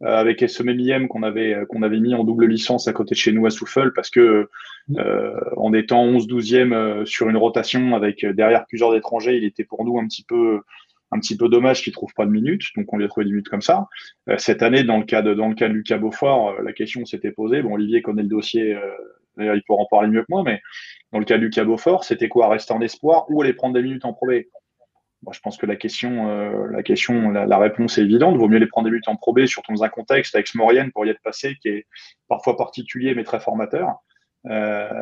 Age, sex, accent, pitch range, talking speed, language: 20-39, male, French, 105-125 Hz, 260 wpm, French